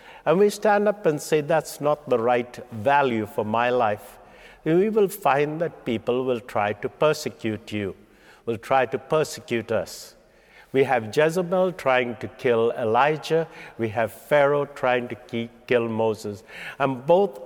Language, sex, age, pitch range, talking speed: English, male, 60-79, 125-170 Hz, 155 wpm